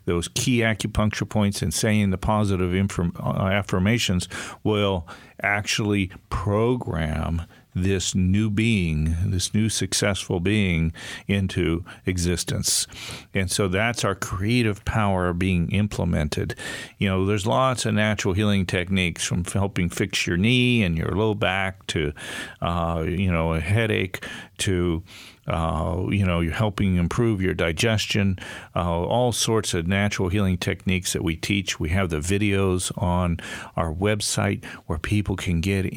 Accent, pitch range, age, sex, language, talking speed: American, 90-105 Hz, 50-69, male, English, 135 wpm